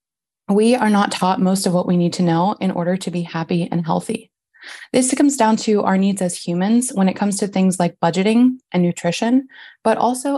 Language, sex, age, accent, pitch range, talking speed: English, female, 20-39, American, 180-225 Hz, 215 wpm